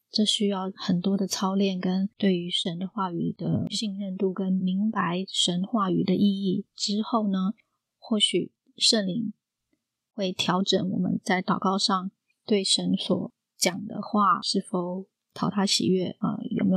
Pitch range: 185-205 Hz